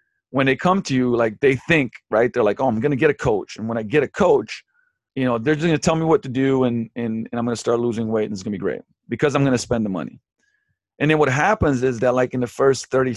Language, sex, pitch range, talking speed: English, male, 115-150 Hz, 285 wpm